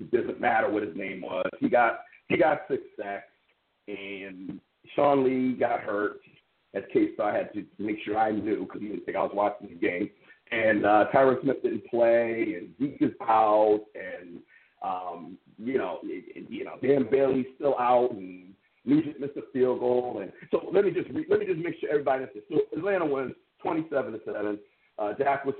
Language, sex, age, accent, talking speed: English, male, 50-69, American, 205 wpm